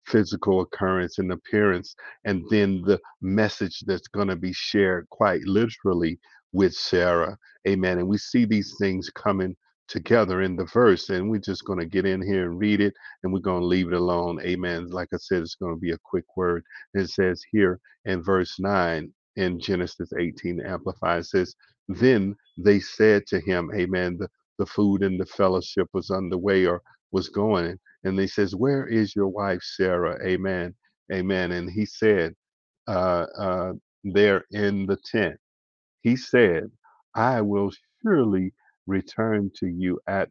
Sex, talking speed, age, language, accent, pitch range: male, 170 wpm, 50-69, English, American, 90-100 Hz